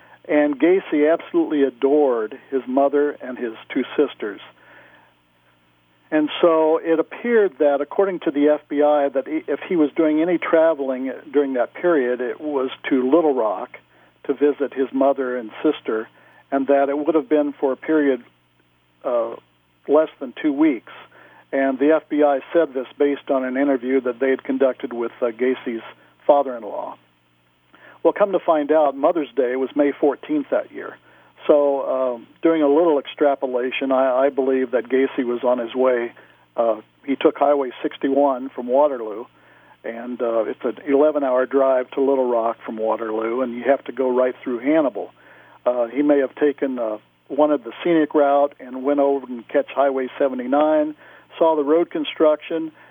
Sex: male